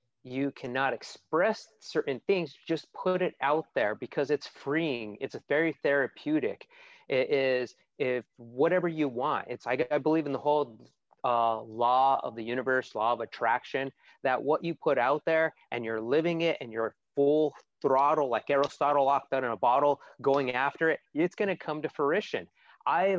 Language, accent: English, American